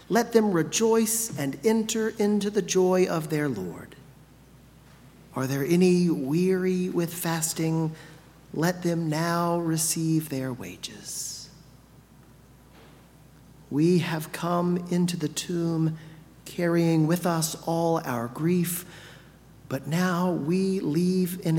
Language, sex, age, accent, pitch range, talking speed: English, male, 40-59, American, 150-185 Hz, 110 wpm